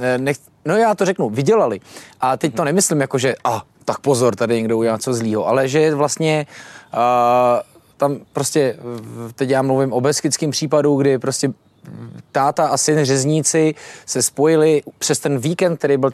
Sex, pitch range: male, 130-160 Hz